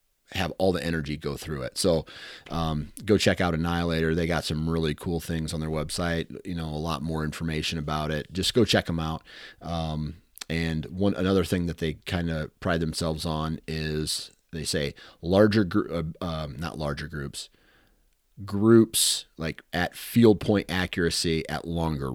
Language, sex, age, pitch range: English, male, 30-49, 75-90 Hz